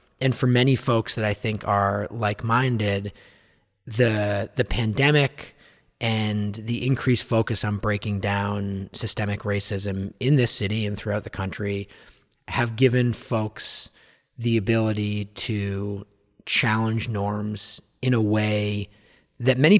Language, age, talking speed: English, 30-49, 125 wpm